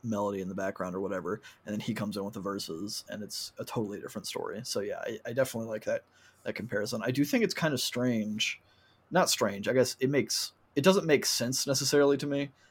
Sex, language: male, English